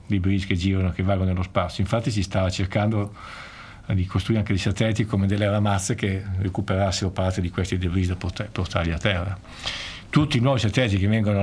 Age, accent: 50-69, native